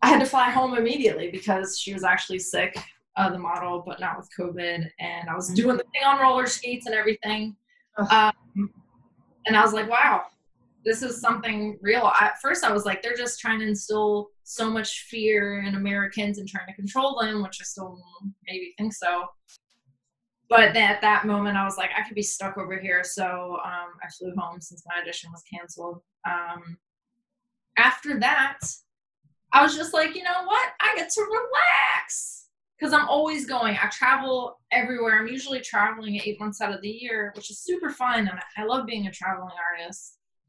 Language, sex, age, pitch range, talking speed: English, female, 20-39, 190-235 Hz, 195 wpm